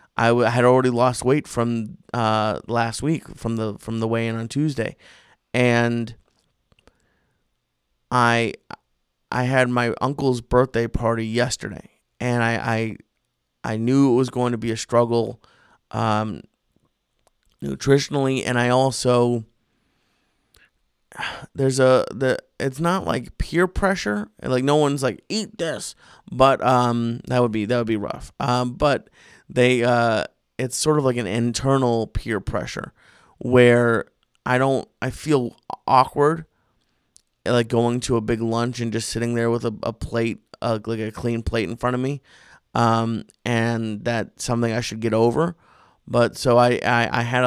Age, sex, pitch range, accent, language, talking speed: 30-49, male, 115-125 Hz, American, English, 150 wpm